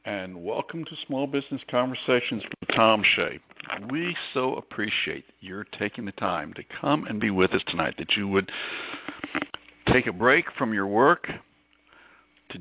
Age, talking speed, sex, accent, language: 60-79, 155 wpm, male, American, English